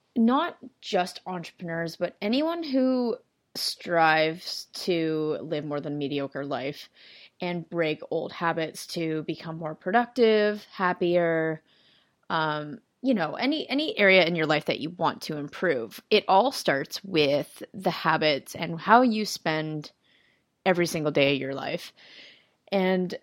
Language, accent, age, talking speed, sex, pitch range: English, American, 20-39, 140 wpm, female, 160-200 Hz